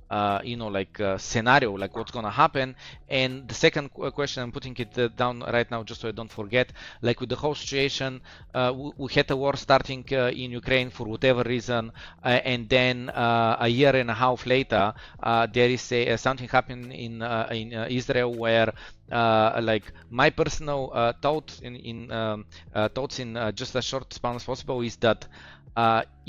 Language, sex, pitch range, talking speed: Bulgarian, male, 115-140 Hz, 200 wpm